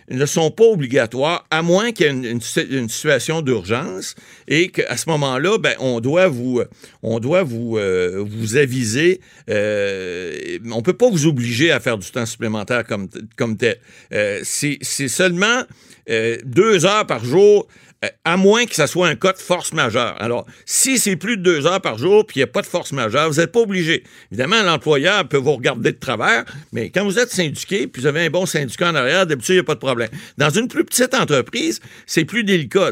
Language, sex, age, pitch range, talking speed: French, male, 60-79, 130-190 Hz, 215 wpm